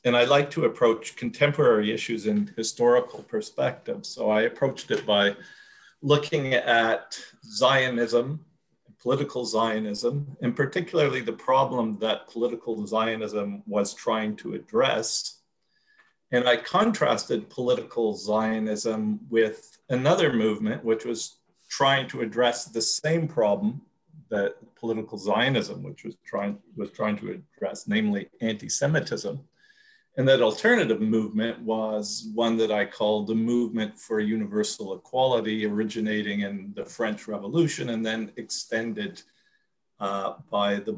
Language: English